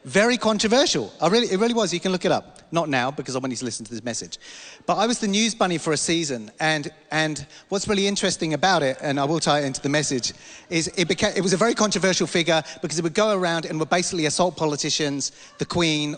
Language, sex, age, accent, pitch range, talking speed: English, male, 40-59, British, 145-190 Hz, 250 wpm